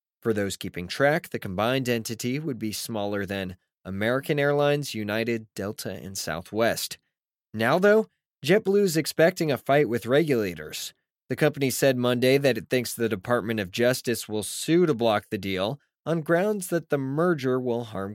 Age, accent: 20-39, American